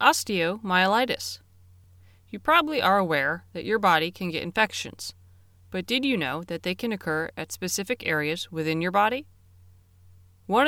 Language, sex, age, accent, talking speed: English, female, 30-49, American, 145 wpm